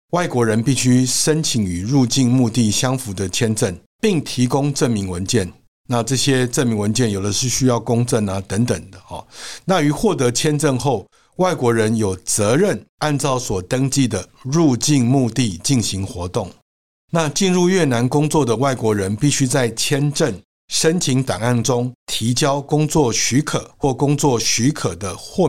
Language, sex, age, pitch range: Chinese, male, 60-79, 110-145 Hz